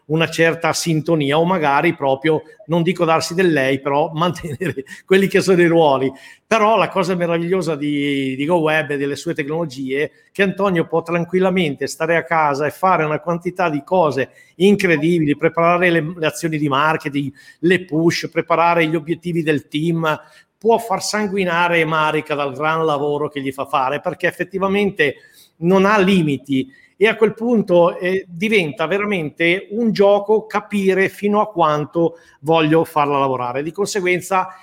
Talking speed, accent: 160 wpm, native